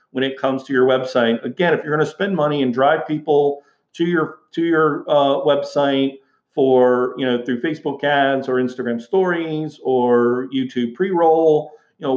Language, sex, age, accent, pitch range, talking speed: English, male, 40-59, American, 130-155 Hz, 180 wpm